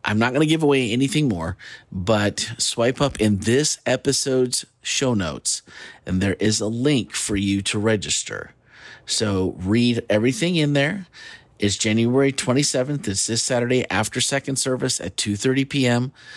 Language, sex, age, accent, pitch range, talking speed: English, male, 30-49, American, 105-130 Hz, 155 wpm